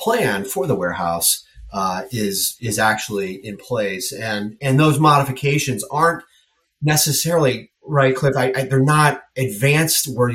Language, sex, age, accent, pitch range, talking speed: English, male, 30-49, American, 105-140 Hz, 140 wpm